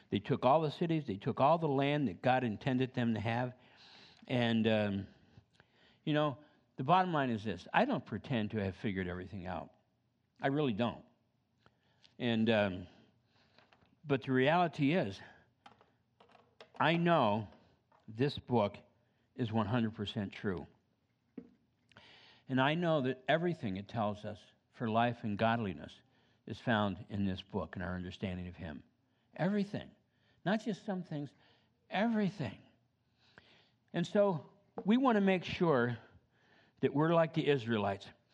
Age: 60-79